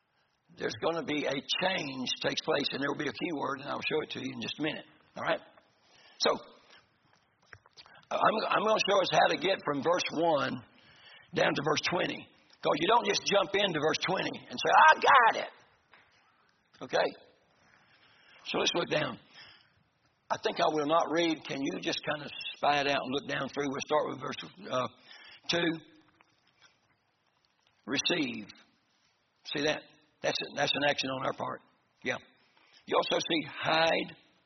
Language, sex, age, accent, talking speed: English, male, 60-79, American, 175 wpm